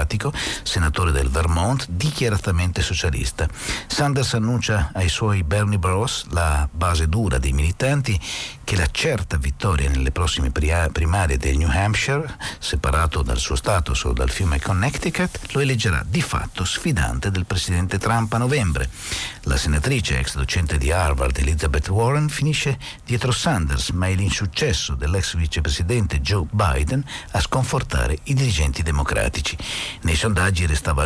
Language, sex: Italian, male